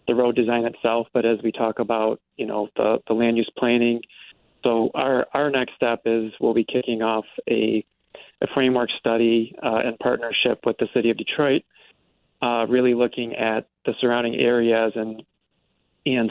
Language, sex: English, male